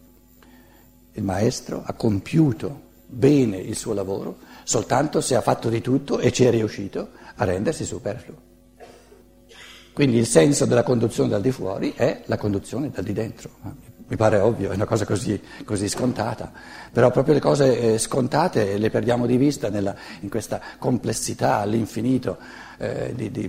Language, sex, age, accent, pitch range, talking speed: Italian, male, 60-79, native, 110-130 Hz, 155 wpm